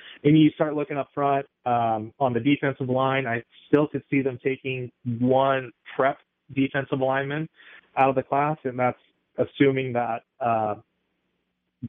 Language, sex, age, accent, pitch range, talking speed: English, male, 30-49, American, 110-130 Hz, 150 wpm